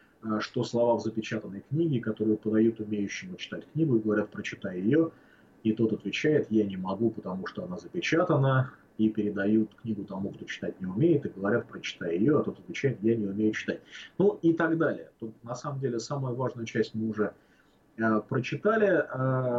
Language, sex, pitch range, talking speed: English, male, 110-140 Hz, 180 wpm